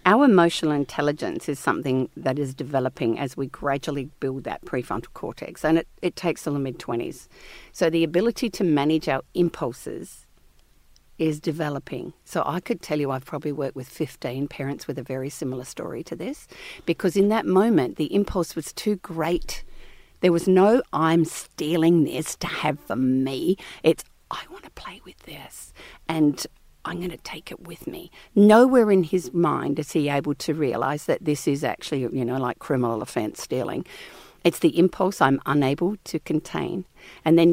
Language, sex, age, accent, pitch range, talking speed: English, female, 50-69, Australian, 140-175 Hz, 180 wpm